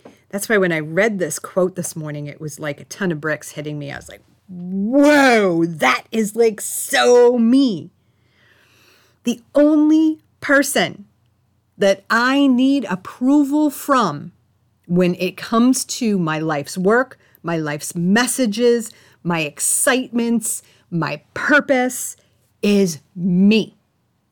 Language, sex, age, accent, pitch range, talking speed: English, female, 40-59, American, 150-210 Hz, 125 wpm